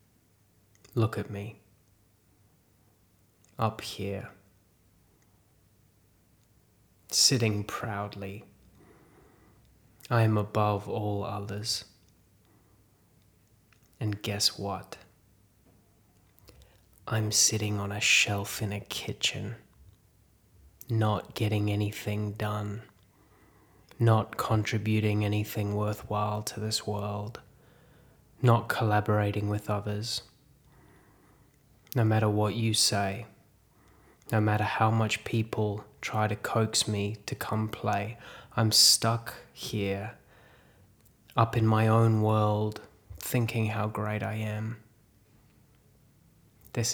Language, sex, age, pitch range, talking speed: English, male, 20-39, 105-115 Hz, 90 wpm